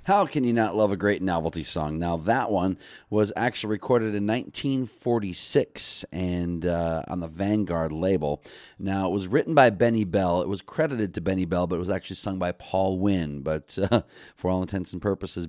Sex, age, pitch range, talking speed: male, 40-59, 85-100 Hz, 200 wpm